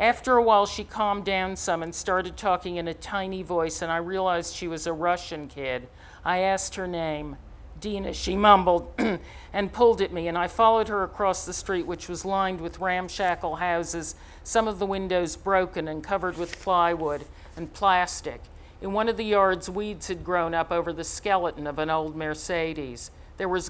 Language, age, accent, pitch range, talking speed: English, 50-69, American, 160-190 Hz, 190 wpm